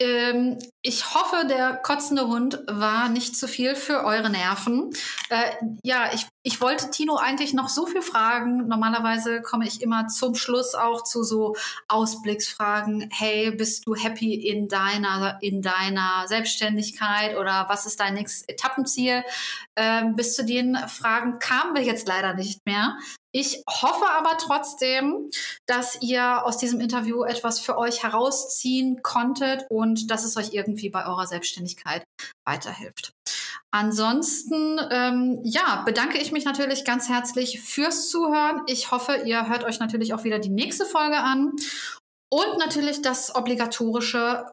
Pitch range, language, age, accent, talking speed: 220-265 Hz, German, 20-39, German, 150 wpm